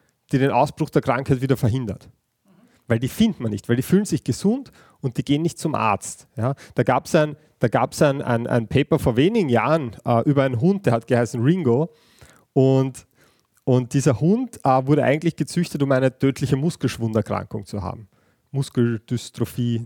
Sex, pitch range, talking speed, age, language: male, 120-155 Hz, 170 wpm, 30-49, German